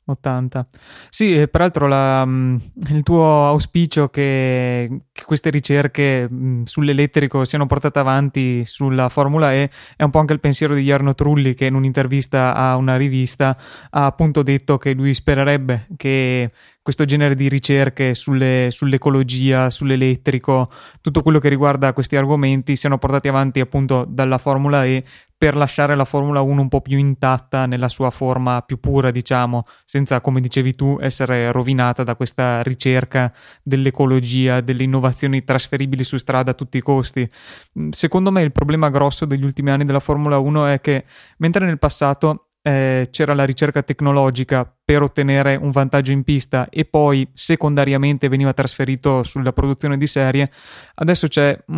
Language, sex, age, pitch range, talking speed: Italian, male, 20-39, 130-145 Hz, 150 wpm